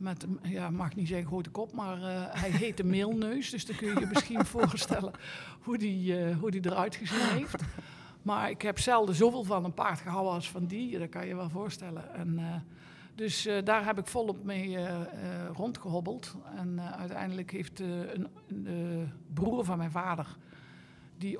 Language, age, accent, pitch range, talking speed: Dutch, 60-79, Dutch, 170-195 Hz, 195 wpm